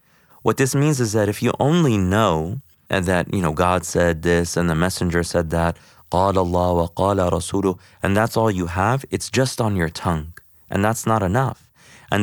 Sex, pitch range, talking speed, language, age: male, 90-120 Hz, 200 wpm, English, 30-49